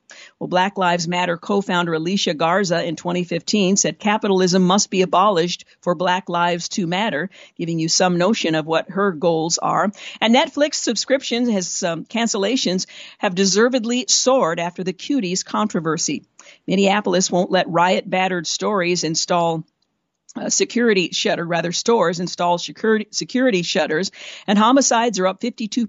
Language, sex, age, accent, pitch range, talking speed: English, female, 50-69, American, 175-215 Hz, 140 wpm